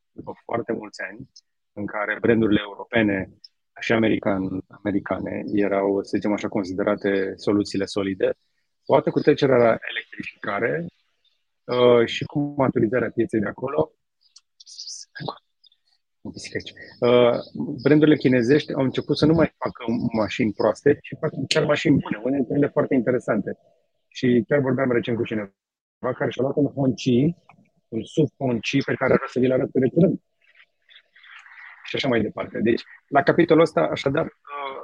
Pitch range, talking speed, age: 110-140 Hz, 135 wpm, 30-49